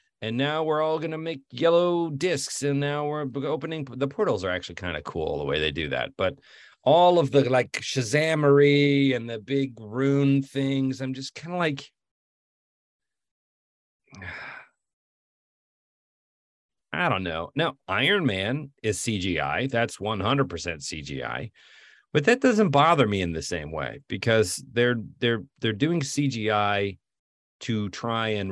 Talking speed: 145 wpm